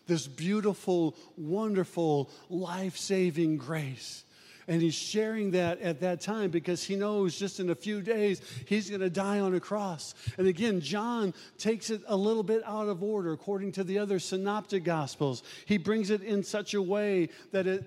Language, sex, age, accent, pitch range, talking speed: English, male, 50-69, American, 180-210 Hz, 180 wpm